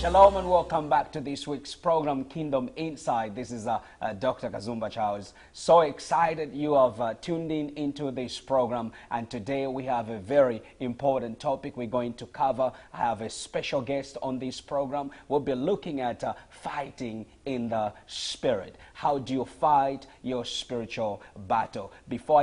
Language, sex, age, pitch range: English, male, 30-49, 120-150 Hz